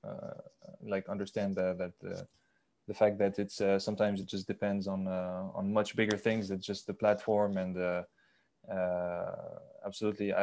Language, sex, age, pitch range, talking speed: English, male, 20-39, 100-110 Hz, 165 wpm